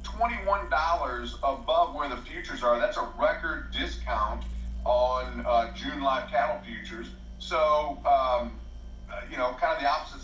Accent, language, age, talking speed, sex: American, English, 40-59, 135 wpm, male